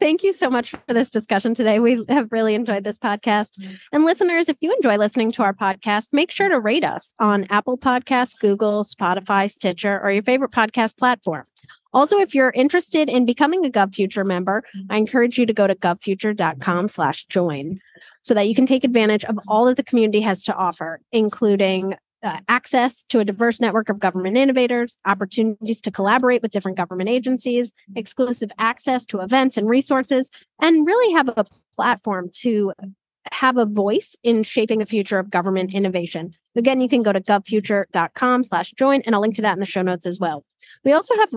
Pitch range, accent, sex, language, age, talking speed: 195-255 Hz, American, female, English, 30-49, 190 wpm